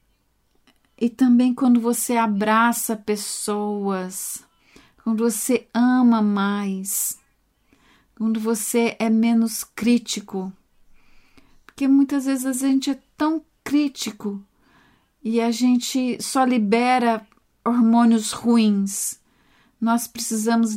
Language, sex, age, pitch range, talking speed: English, female, 40-59, 215-245 Hz, 90 wpm